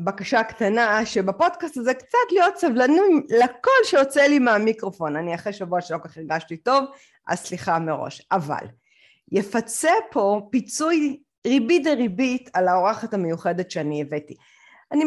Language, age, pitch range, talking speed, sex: Hebrew, 30-49, 195-300 Hz, 135 wpm, female